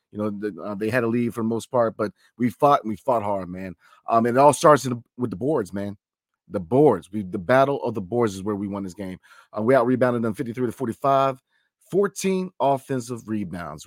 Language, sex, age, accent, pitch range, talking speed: English, male, 40-59, American, 105-135 Hz, 220 wpm